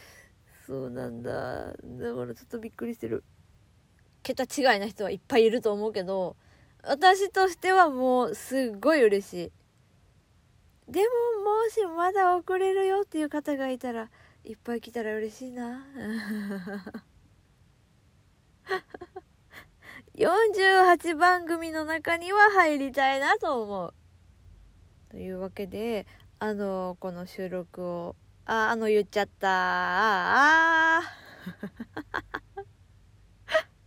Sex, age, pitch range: female, 20-39, 215-320 Hz